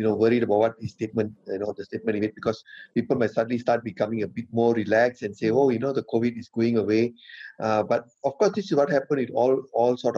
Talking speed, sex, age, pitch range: 265 wpm, male, 30-49, 105-120 Hz